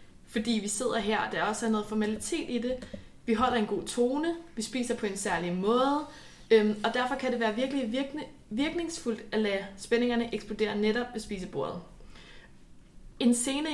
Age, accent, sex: 20-39, native, female